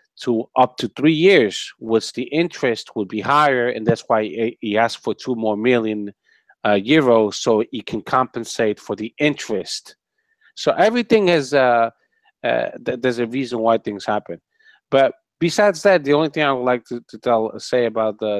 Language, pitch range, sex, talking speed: English, 105-130 Hz, male, 185 wpm